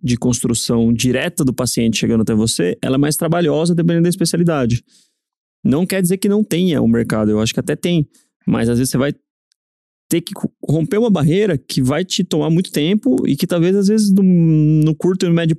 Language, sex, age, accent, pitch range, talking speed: Portuguese, male, 20-39, Brazilian, 130-180 Hz, 210 wpm